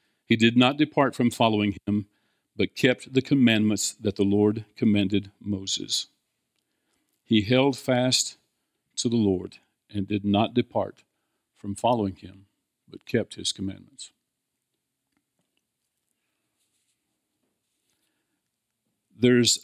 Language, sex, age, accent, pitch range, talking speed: English, male, 50-69, American, 105-120 Hz, 105 wpm